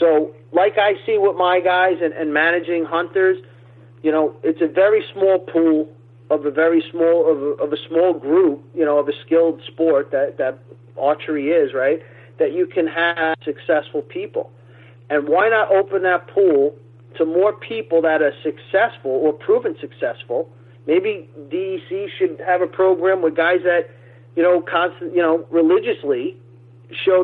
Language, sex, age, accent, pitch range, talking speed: English, male, 40-59, American, 130-180 Hz, 165 wpm